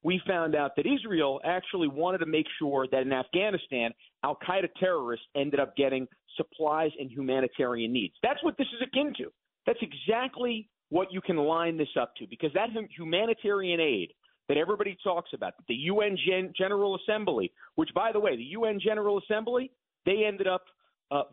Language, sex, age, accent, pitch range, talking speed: English, male, 40-59, American, 145-205 Hz, 170 wpm